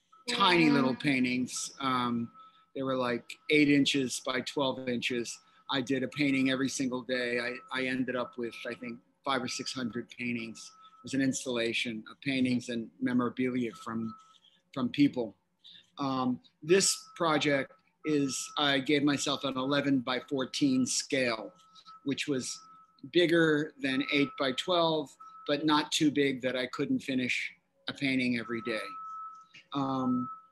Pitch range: 130-175 Hz